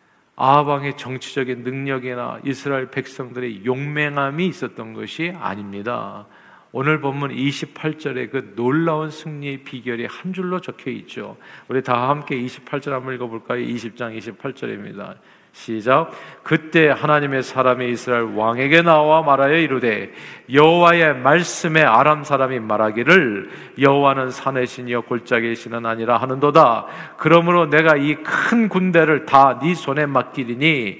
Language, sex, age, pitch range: Korean, male, 40-59, 115-145 Hz